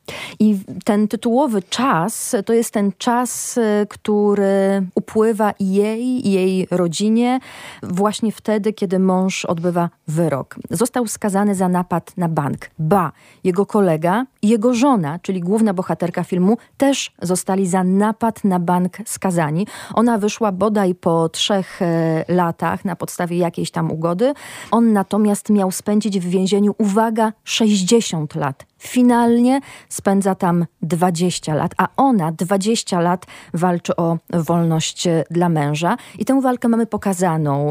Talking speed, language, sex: 130 wpm, Polish, female